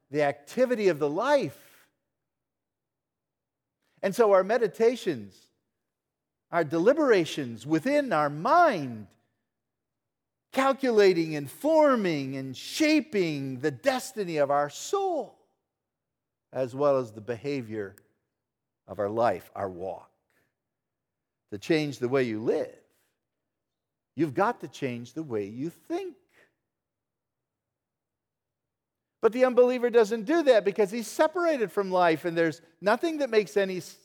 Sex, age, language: male, 50-69, English